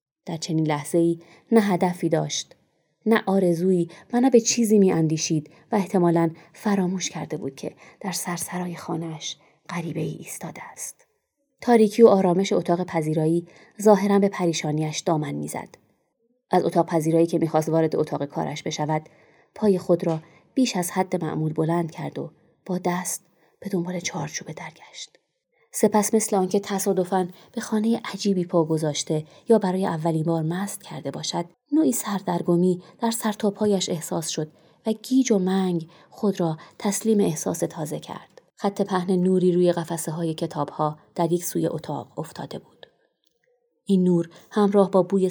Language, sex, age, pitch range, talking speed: Persian, female, 20-39, 165-200 Hz, 145 wpm